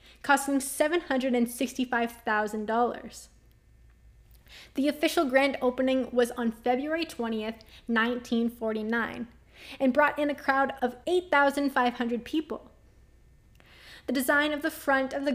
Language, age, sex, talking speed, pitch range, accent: English, 10-29, female, 100 wpm, 235-285 Hz, American